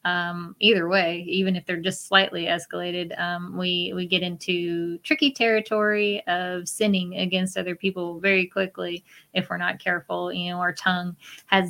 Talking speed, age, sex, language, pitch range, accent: 165 wpm, 20-39, female, English, 165-195 Hz, American